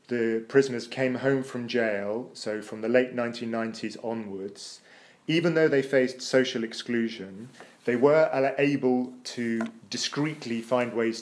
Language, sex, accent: English, male, British